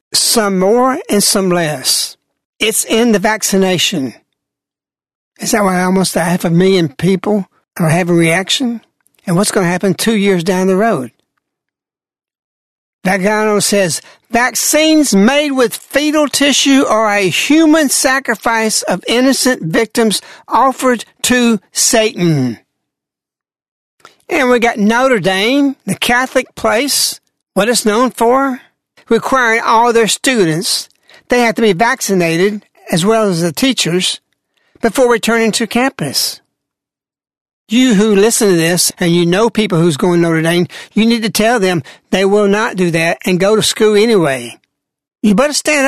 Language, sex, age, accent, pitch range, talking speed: English, male, 60-79, American, 185-245 Hz, 145 wpm